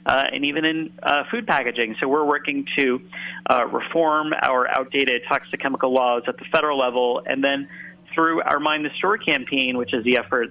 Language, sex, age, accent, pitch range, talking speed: English, male, 30-49, American, 110-135 Hz, 195 wpm